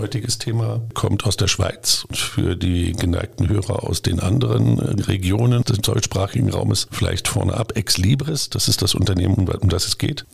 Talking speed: 175 wpm